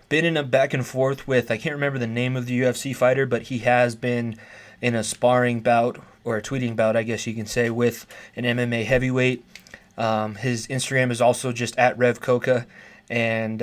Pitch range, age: 115-130 Hz, 20-39